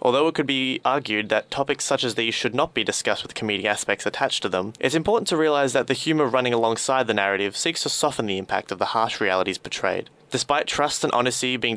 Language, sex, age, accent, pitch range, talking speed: English, male, 20-39, Australian, 115-150 Hz, 235 wpm